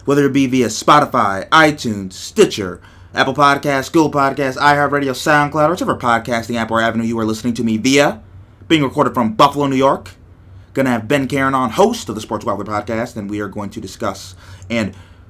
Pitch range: 100-145 Hz